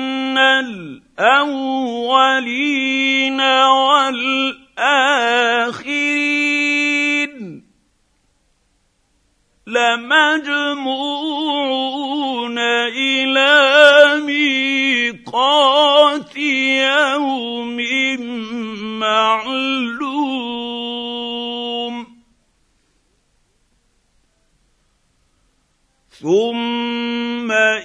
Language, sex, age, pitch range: English, male, 50-69, 235-270 Hz